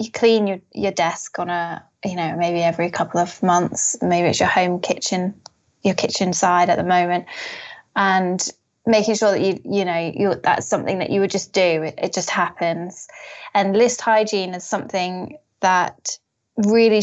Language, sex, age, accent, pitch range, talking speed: English, female, 20-39, British, 180-210 Hz, 180 wpm